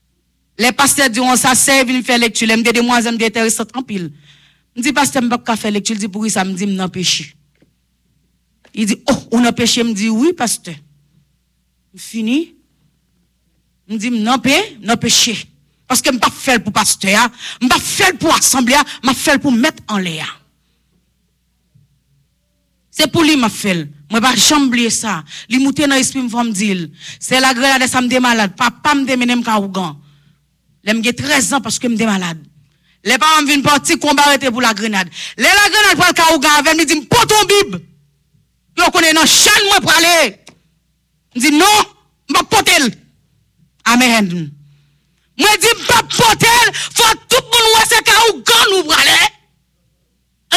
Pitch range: 185-305 Hz